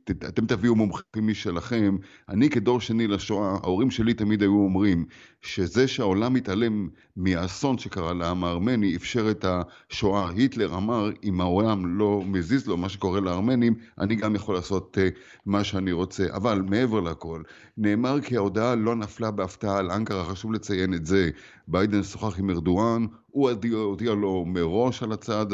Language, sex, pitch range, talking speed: Hebrew, male, 95-120 Hz, 155 wpm